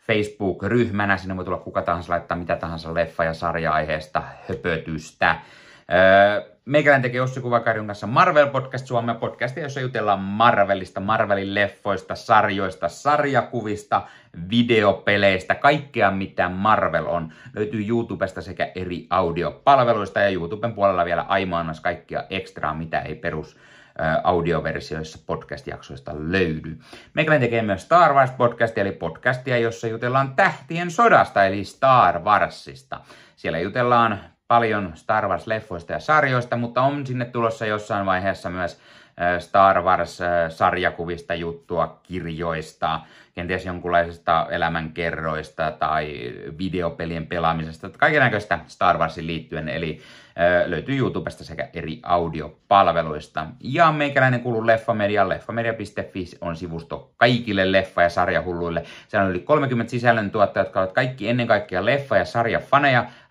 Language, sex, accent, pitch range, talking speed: Finnish, male, native, 85-120 Hz, 120 wpm